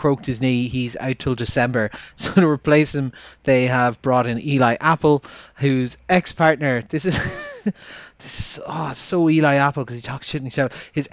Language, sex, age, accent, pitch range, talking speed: English, male, 30-49, Irish, 120-145 Hz, 185 wpm